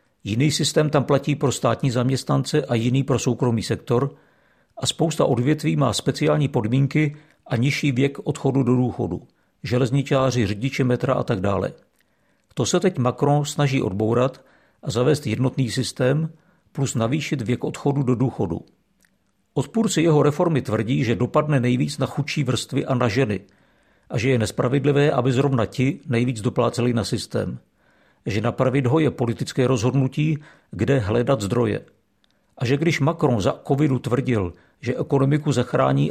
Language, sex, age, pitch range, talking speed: Czech, male, 50-69, 125-145 Hz, 145 wpm